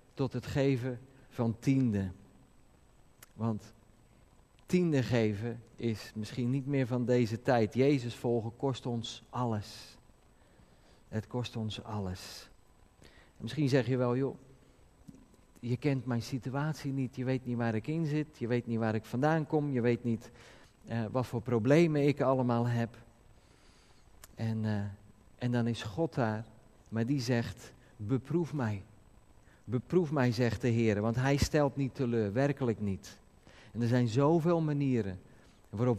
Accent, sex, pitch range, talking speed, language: Dutch, male, 115-140 Hz, 145 wpm, Dutch